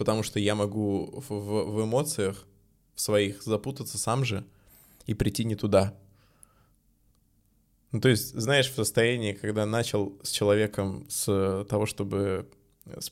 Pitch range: 100-120 Hz